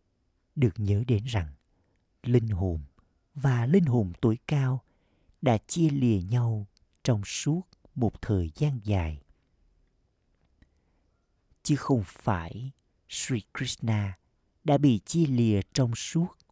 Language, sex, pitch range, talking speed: Vietnamese, male, 90-125 Hz, 115 wpm